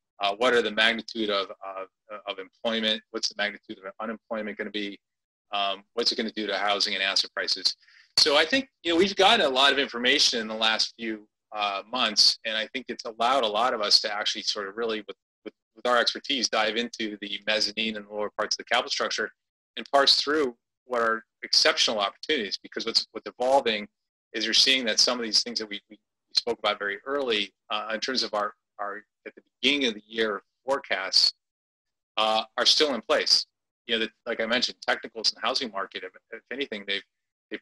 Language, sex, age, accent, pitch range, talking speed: English, male, 30-49, American, 105-120 Hz, 215 wpm